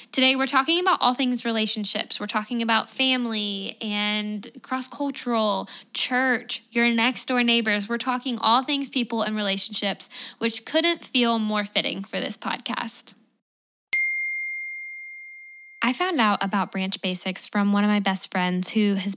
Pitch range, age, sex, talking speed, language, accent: 195-245 Hz, 10-29, female, 145 wpm, English, American